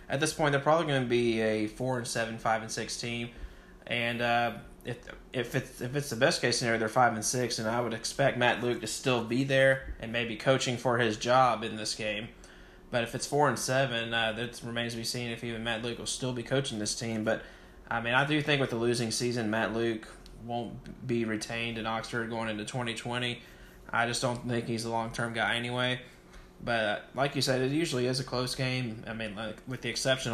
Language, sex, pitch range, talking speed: English, male, 115-130 Hz, 235 wpm